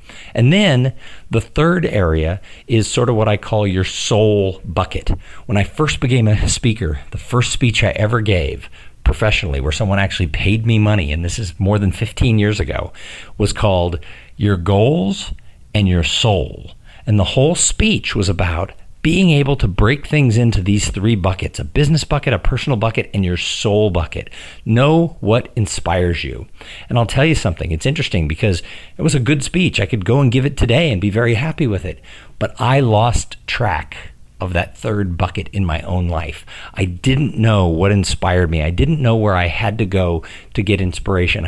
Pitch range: 95-125 Hz